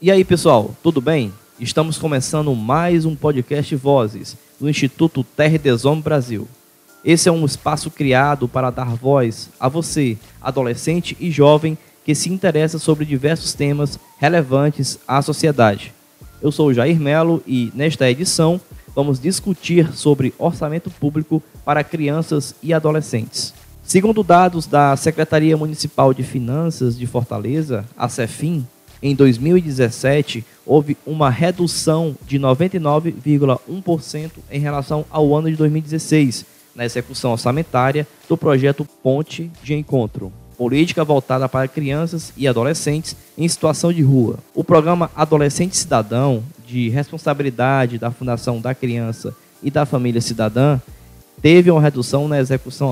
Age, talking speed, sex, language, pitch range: 20-39, 130 wpm, male, Portuguese, 130-160 Hz